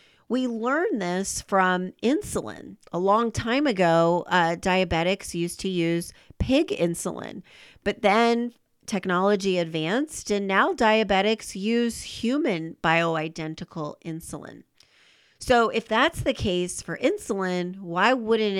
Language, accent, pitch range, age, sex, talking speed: English, American, 170-220 Hz, 40-59, female, 115 wpm